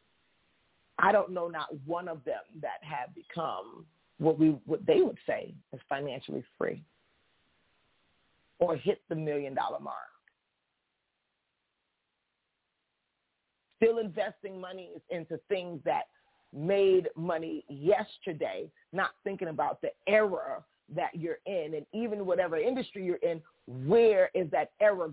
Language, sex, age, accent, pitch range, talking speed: English, female, 40-59, American, 160-220 Hz, 120 wpm